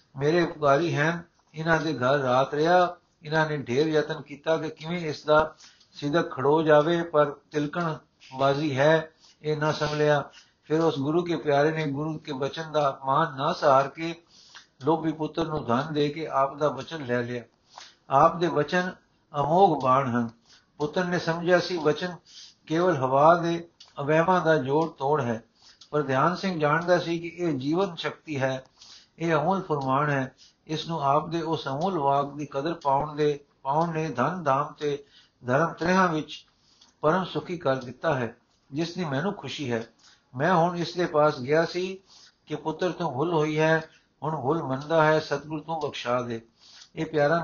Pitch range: 135-165 Hz